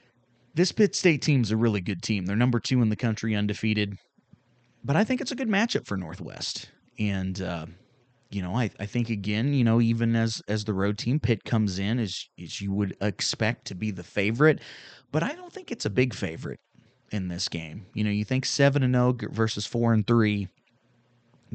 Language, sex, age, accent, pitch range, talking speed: English, male, 30-49, American, 100-125 Hz, 205 wpm